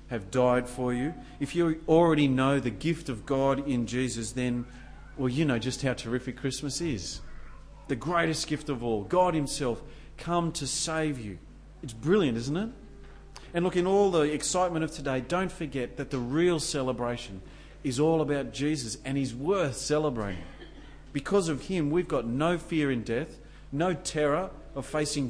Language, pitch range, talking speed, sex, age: English, 120-155 Hz, 175 wpm, male, 40-59